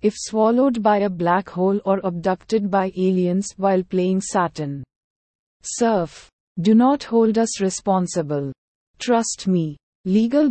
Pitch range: 180-225 Hz